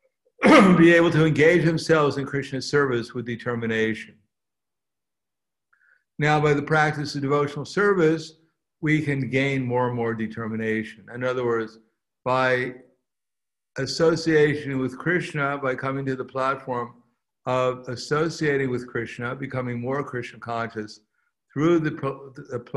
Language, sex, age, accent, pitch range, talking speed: English, male, 60-79, American, 120-145 Hz, 120 wpm